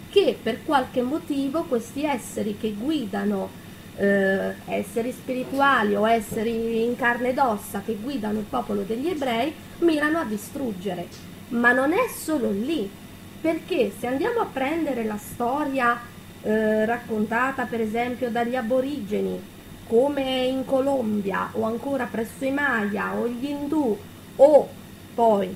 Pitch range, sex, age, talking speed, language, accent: 205-260 Hz, female, 20-39, 135 wpm, Italian, native